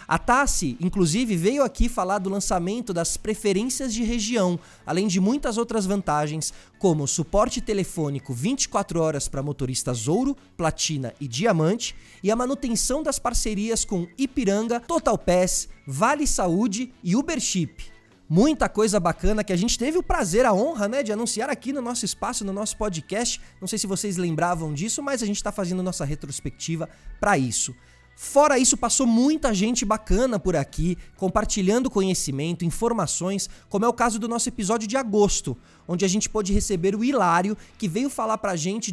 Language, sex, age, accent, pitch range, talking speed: Portuguese, male, 20-39, Brazilian, 170-230 Hz, 170 wpm